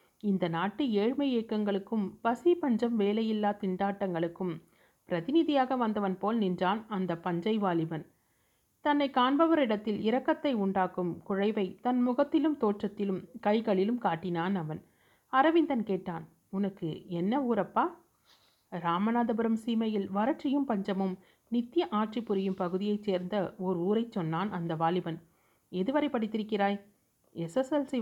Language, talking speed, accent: Tamil, 100 wpm, native